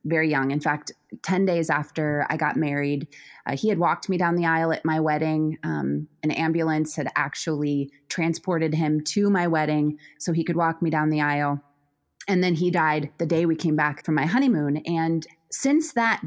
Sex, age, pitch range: female, 20-39, 150-175 Hz